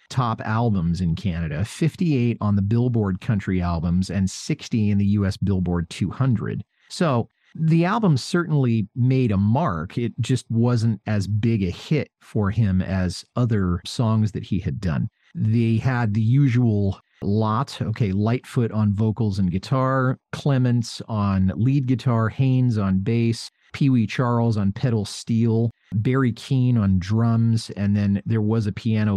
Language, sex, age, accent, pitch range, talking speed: English, male, 40-59, American, 100-125 Hz, 150 wpm